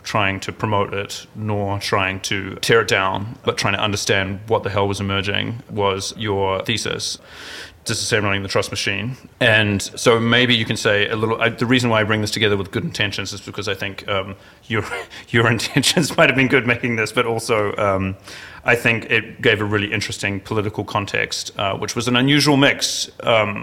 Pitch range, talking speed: 100-115 Hz, 195 wpm